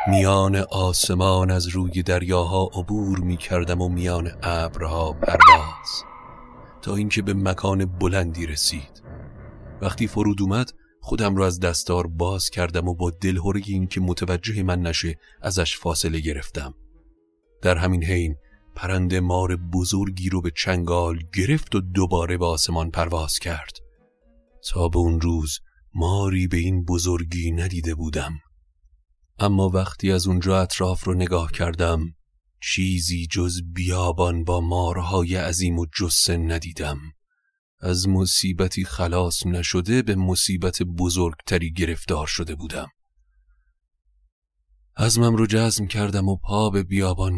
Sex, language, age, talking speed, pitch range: male, Persian, 40-59, 125 wpm, 85-95 Hz